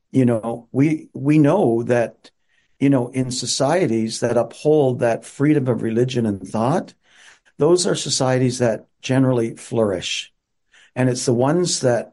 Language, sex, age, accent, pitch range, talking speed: English, male, 50-69, American, 115-140 Hz, 145 wpm